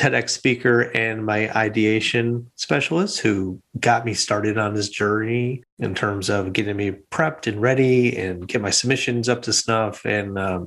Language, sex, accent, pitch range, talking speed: English, male, American, 100-125 Hz, 170 wpm